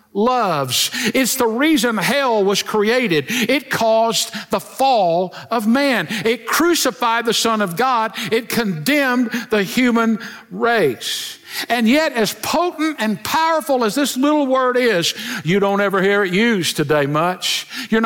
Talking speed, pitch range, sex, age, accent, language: 145 wpm, 170-235 Hz, male, 60-79, American, English